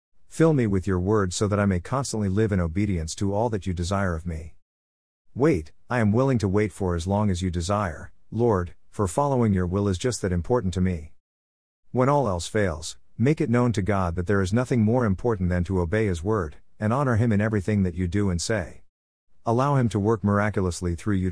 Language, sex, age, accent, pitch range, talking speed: English, male, 50-69, American, 90-115 Hz, 225 wpm